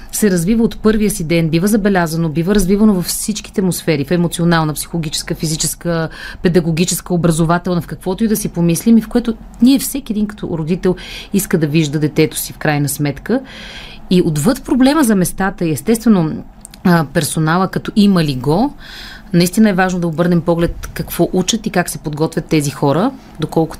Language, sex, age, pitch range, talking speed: Bulgarian, female, 30-49, 160-210 Hz, 170 wpm